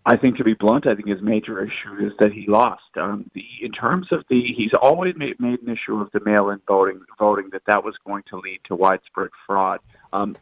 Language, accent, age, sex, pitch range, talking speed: English, American, 40-59, male, 100-115 Hz, 230 wpm